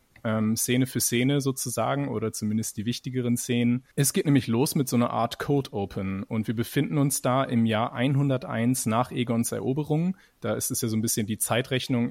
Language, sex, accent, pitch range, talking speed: German, male, German, 110-125 Hz, 200 wpm